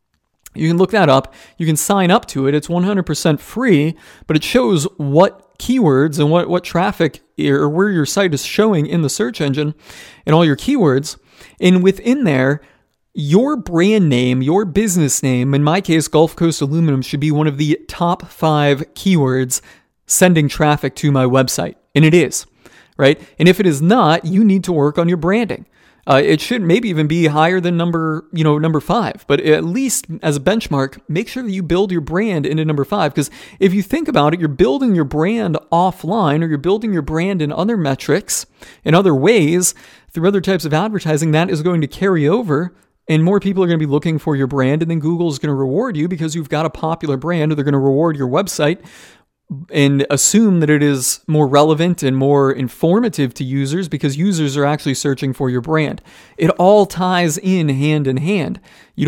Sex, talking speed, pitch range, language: male, 205 wpm, 145-185 Hz, English